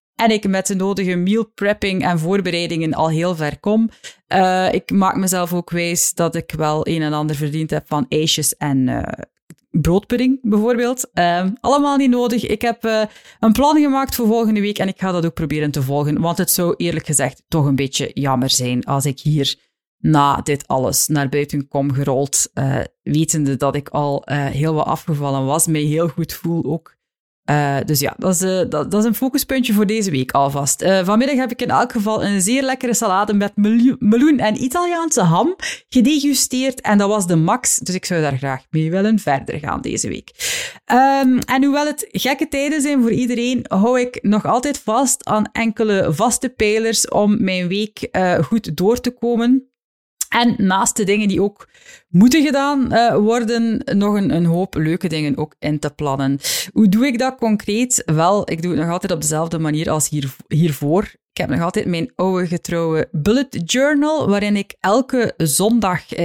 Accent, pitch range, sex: Dutch, 155-235 Hz, female